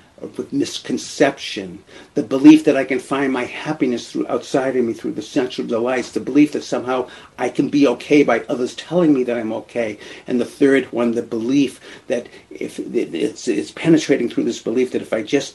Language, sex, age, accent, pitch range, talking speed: English, male, 50-69, American, 115-140 Hz, 200 wpm